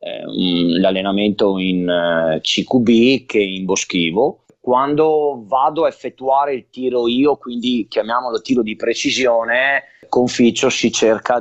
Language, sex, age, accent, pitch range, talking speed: Italian, male, 30-49, native, 110-135 Hz, 115 wpm